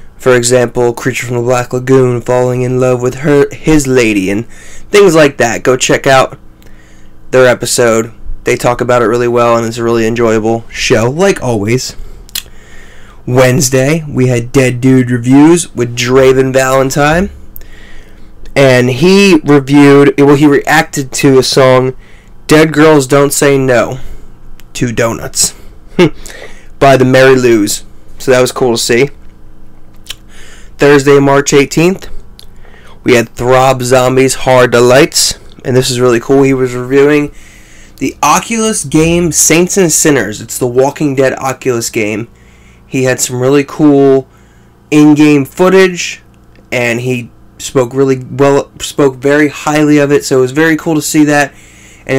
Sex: male